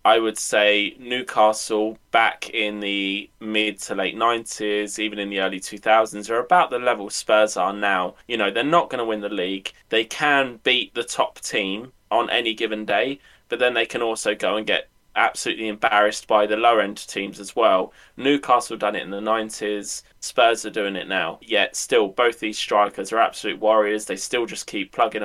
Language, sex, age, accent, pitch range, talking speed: English, male, 20-39, British, 105-120 Hz, 195 wpm